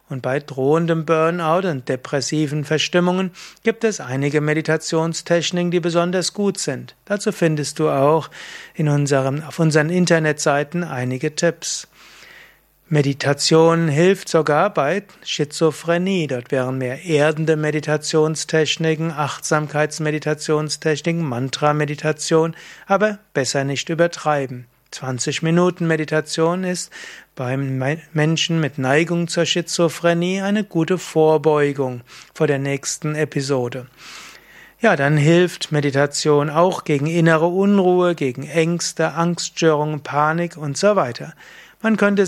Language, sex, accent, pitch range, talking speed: German, male, German, 145-175 Hz, 110 wpm